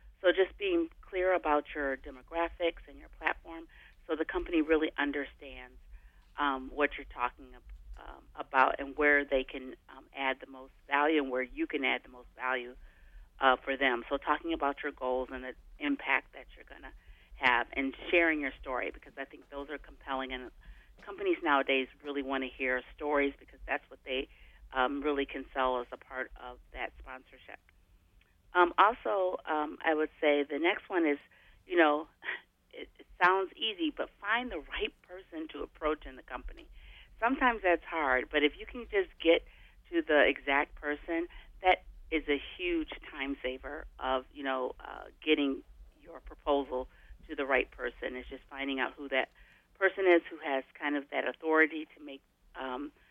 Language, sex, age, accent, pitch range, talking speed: English, female, 40-59, American, 130-165 Hz, 180 wpm